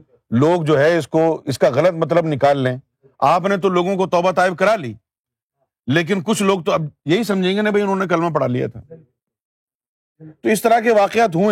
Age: 50-69